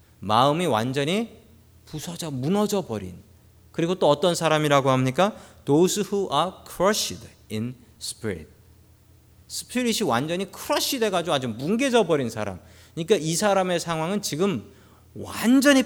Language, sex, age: Korean, male, 40-59